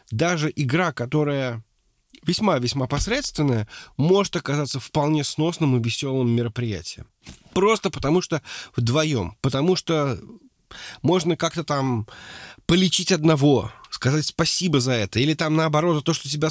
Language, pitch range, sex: Russian, 130-170 Hz, male